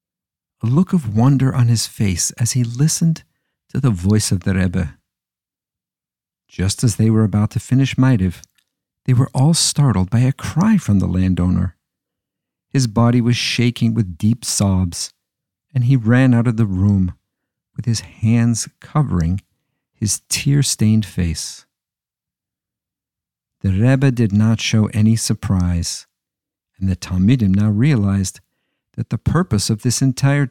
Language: English